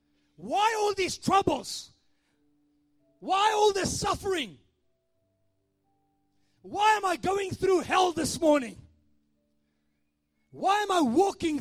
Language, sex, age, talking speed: English, male, 30-49, 105 wpm